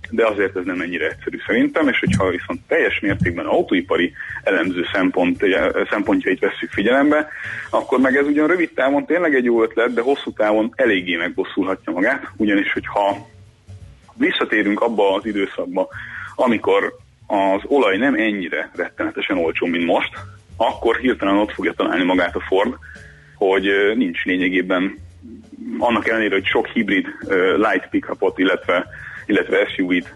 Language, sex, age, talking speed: Hungarian, male, 30-49, 140 wpm